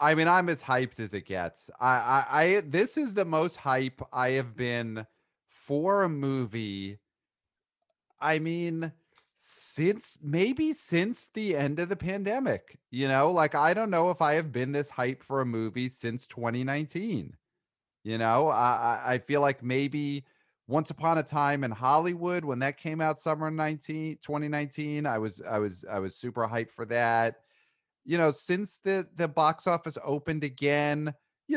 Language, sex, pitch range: English, male, 120-155 Hz